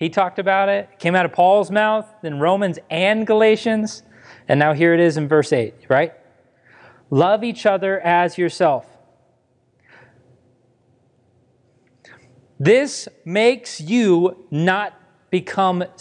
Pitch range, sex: 125-160 Hz, male